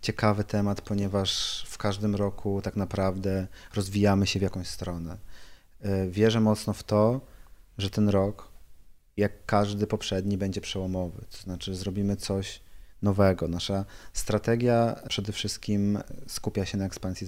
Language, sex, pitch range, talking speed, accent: Polish, male, 90-105 Hz, 130 wpm, native